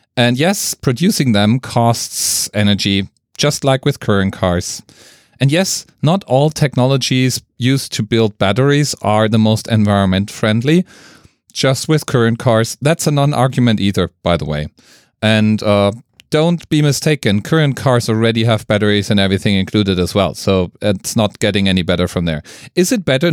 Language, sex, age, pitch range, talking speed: English, male, 40-59, 105-140 Hz, 160 wpm